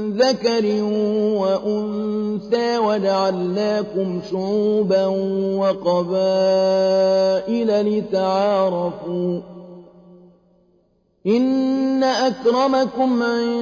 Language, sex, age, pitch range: Arabic, male, 40-59, 195-235 Hz